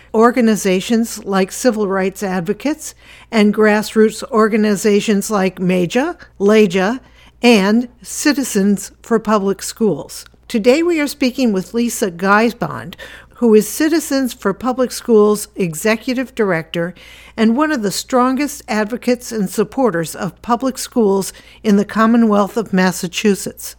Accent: American